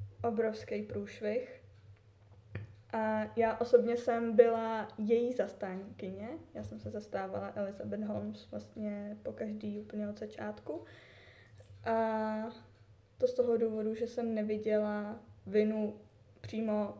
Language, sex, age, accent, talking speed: Czech, female, 20-39, native, 110 wpm